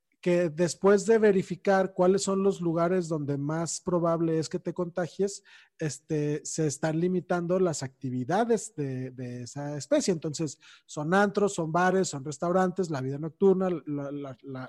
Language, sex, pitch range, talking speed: Spanish, male, 145-190 Hz, 155 wpm